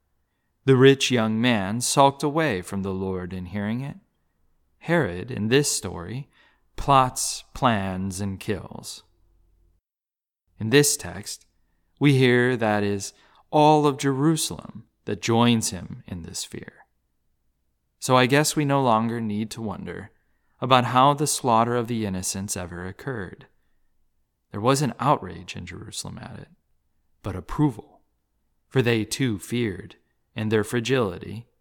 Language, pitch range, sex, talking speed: English, 95-140 Hz, male, 135 wpm